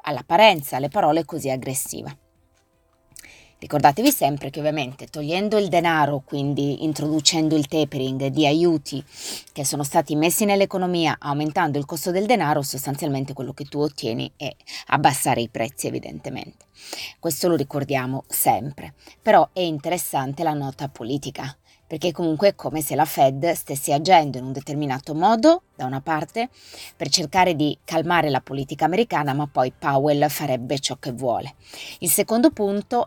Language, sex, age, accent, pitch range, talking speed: Italian, female, 20-39, native, 135-165 Hz, 145 wpm